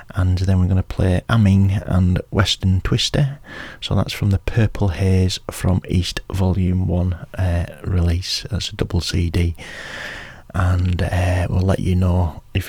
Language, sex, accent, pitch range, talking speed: English, male, British, 95-120 Hz, 150 wpm